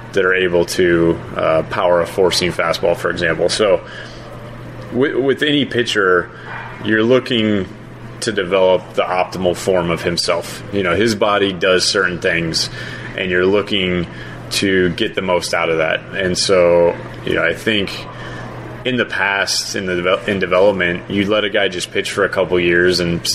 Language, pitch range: English, 90-105 Hz